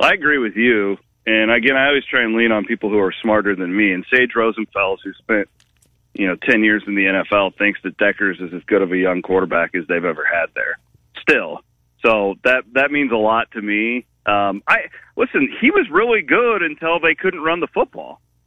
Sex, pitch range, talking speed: male, 105-165 Hz, 220 wpm